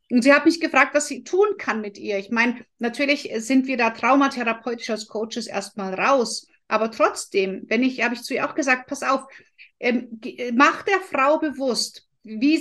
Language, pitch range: German, 230-290 Hz